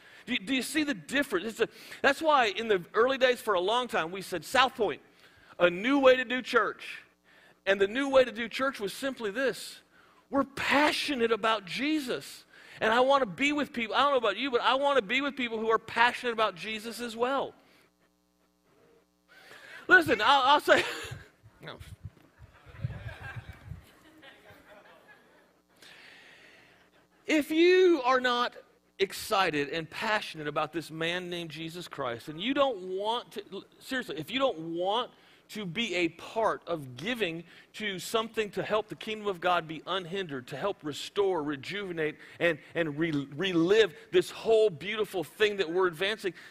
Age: 40-59